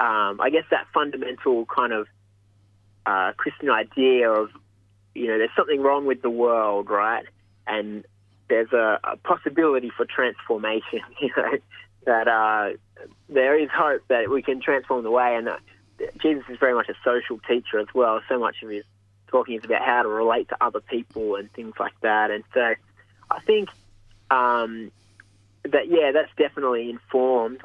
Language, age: English, 20-39